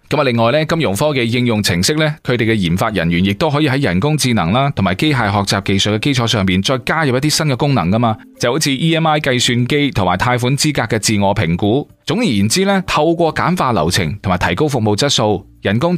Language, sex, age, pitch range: Chinese, male, 20-39, 105-150 Hz